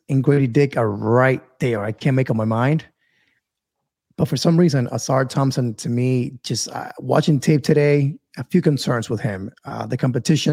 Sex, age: male, 30-49